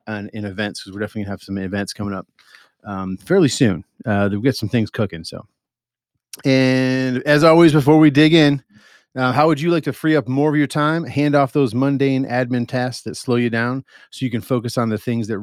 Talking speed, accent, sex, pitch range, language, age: 225 wpm, American, male, 110-145 Hz, English, 40-59